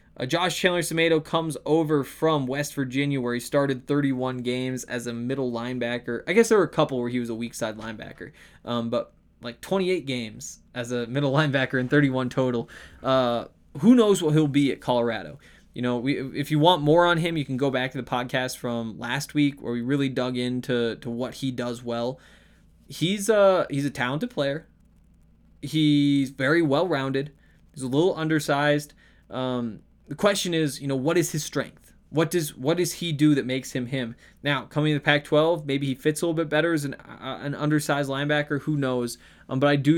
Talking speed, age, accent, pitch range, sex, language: 205 wpm, 20-39, American, 125-150 Hz, male, English